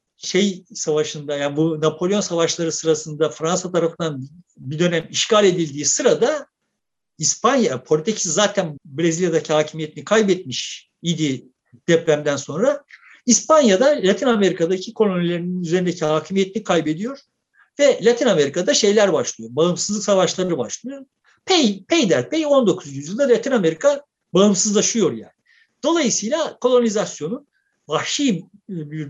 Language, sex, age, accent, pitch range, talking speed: Turkish, male, 60-79, native, 155-225 Hz, 105 wpm